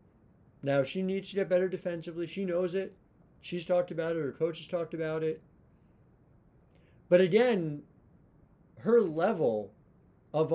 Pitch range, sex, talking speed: 135-185 Hz, male, 140 wpm